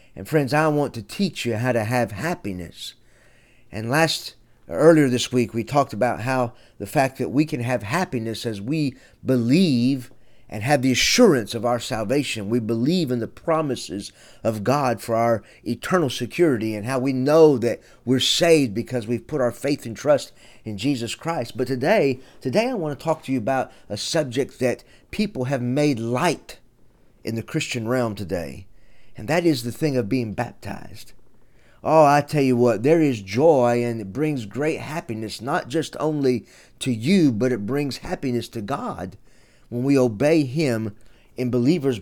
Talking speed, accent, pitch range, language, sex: 180 wpm, American, 115-145 Hz, English, male